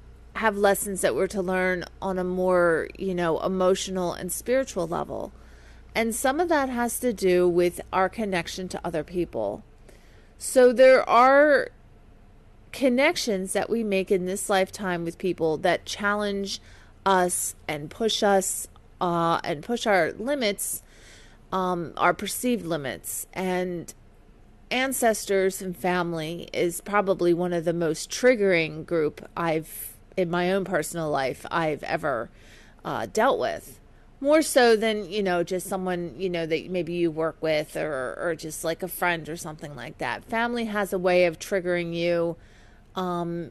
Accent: American